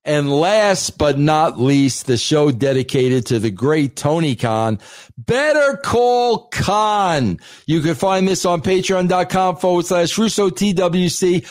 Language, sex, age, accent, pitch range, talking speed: English, male, 50-69, American, 160-240 Hz, 130 wpm